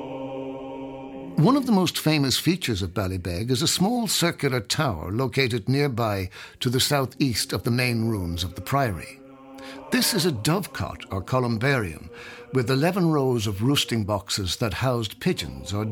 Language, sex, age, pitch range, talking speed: English, male, 60-79, 105-145 Hz, 155 wpm